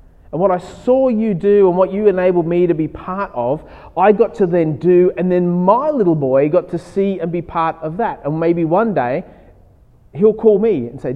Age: 30-49